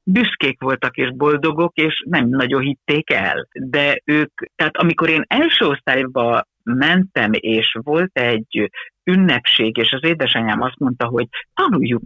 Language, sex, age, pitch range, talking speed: Hungarian, female, 60-79, 120-190 Hz, 140 wpm